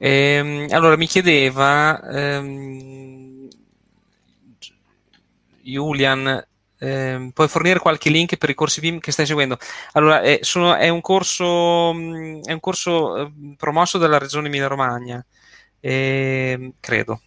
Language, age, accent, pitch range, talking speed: Italian, 20-39, native, 130-150 Hz, 120 wpm